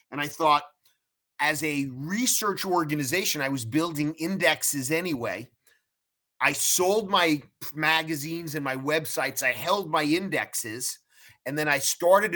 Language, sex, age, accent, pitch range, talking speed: English, male, 30-49, American, 135-165 Hz, 130 wpm